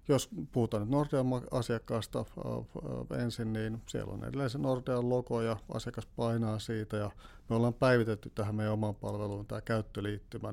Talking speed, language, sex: 155 wpm, Finnish, male